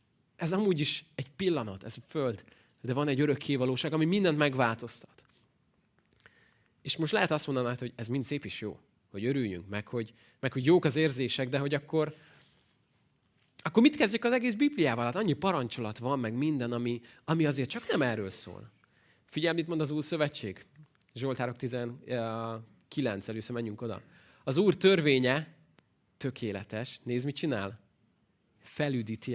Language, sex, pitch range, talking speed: Hungarian, male, 115-150 Hz, 155 wpm